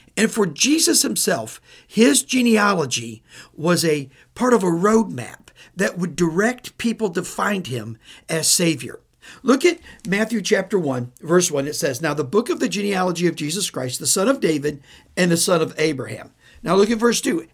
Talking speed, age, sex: 180 wpm, 50-69, male